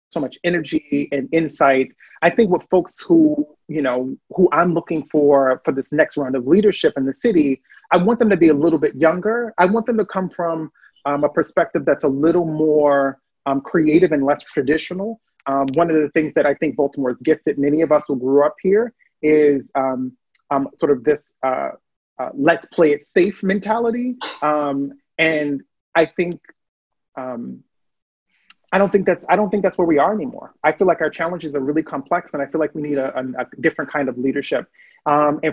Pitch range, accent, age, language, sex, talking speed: 140-185 Hz, American, 30-49, English, male, 210 wpm